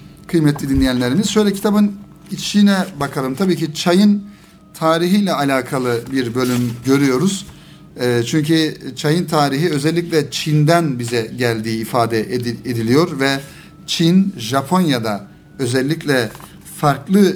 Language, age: Turkish, 50-69